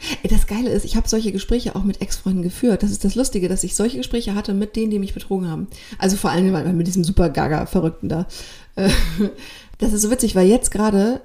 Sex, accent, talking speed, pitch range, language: female, German, 220 wpm, 185-225 Hz, German